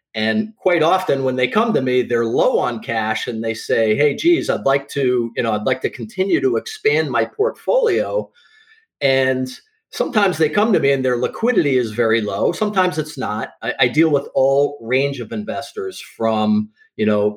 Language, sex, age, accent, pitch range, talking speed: English, male, 40-59, American, 115-185 Hz, 195 wpm